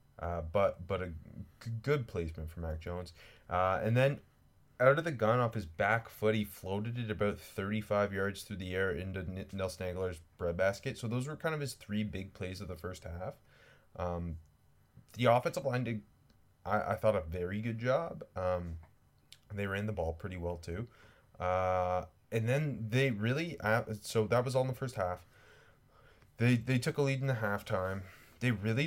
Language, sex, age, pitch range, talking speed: English, male, 30-49, 90-115 Hz, 195 wpm